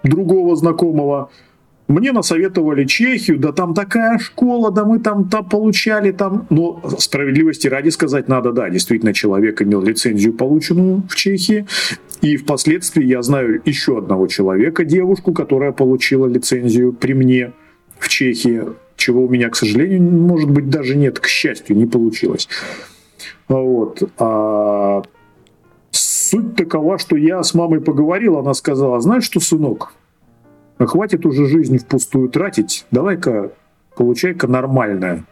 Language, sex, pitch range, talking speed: Russian, male, 125-170 Hz, 130 wpm